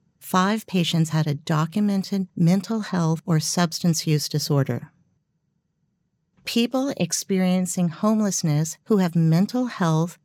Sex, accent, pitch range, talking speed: female, American, 155-195 Hz, 105 wpm